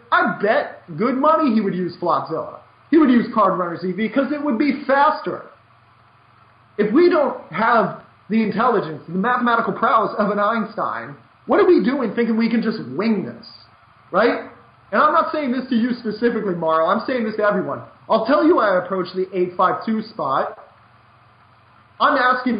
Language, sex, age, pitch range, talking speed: English, male, 30-49, 180-230 Hz, 175 wpm